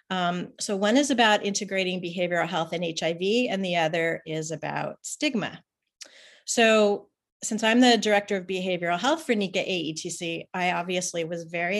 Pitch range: 170-210 Hz